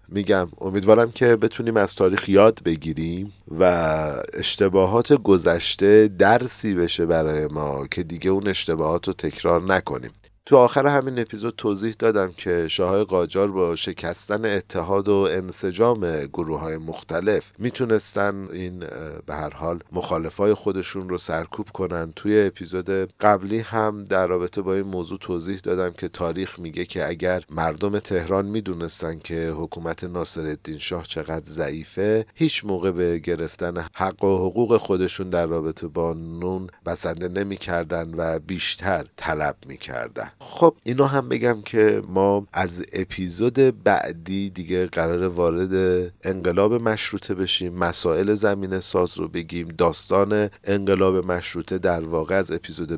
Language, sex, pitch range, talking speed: Persian, male, 85-100 Hz, 135 wpm